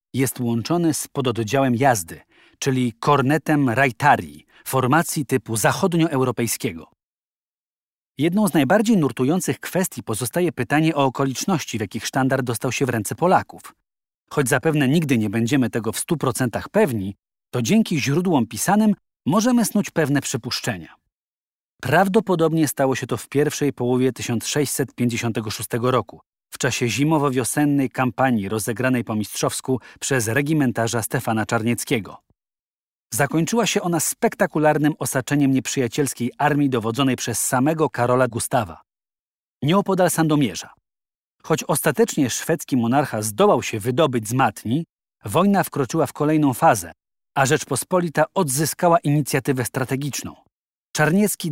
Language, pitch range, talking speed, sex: Polish, 120-155 Hz, 115 wpm, male